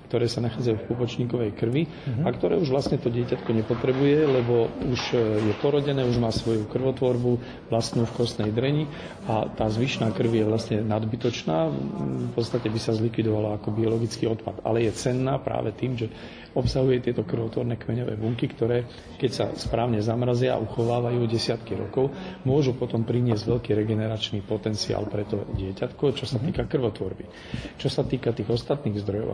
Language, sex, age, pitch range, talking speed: Slovak, male, 40-59, 110-125 Hz, 160 wpm